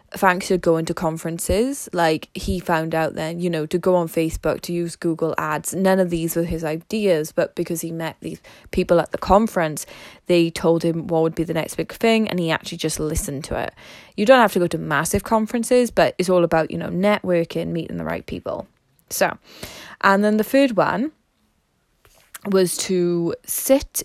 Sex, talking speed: female, 200 wpm